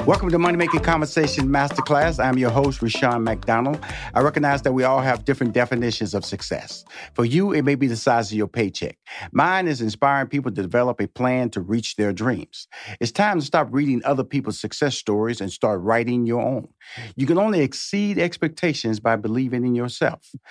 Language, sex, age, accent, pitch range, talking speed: English, male, 50-69, American, 115-145 Hz, 195 wpm